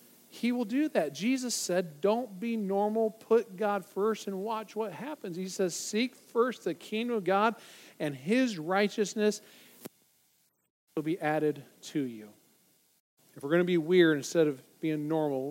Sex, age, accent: male, 40-59, American